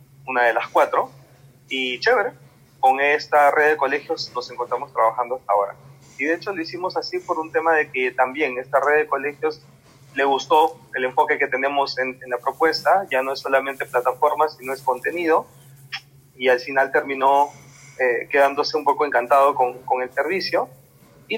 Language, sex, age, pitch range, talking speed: Spanish, male, 30-49, 130-150 Hz, 180 wpm